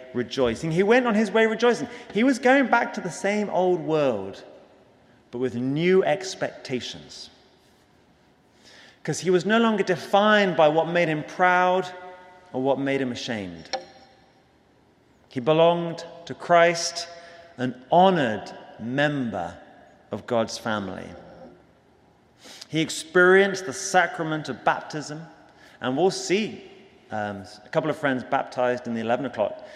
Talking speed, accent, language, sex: 130 wpm, British, English, male